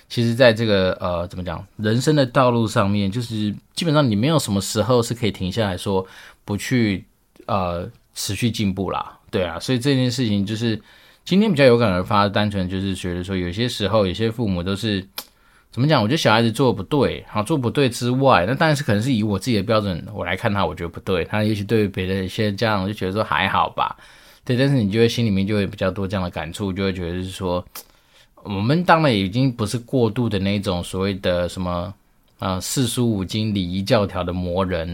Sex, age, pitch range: male, 20-39, 95-115 Hz